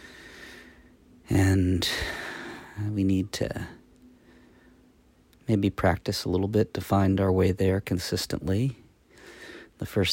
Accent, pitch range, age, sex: American, 90-105 Hz, 40-59, male